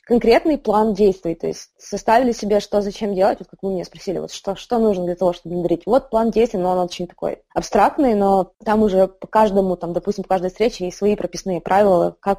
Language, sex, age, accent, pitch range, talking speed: Russian, female, 20-39, native, 205-260 Hz, 225 wpm